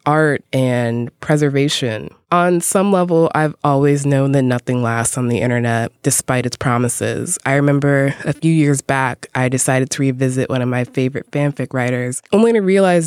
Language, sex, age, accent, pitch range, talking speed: English, female, 20-39, American, 135-165 Hz, 170 wpm